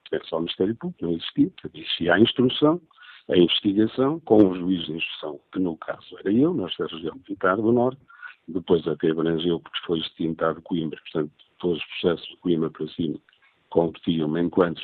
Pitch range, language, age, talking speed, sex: 85-120 Hz, Portuguese, 50-69, 180 wpm, male